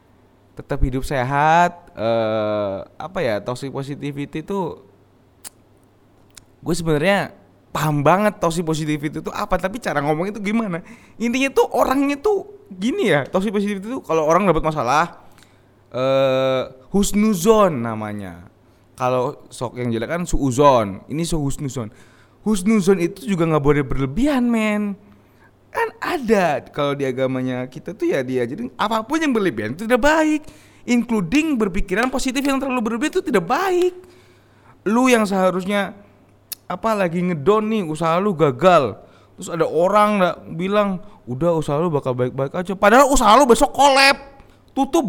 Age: 20-39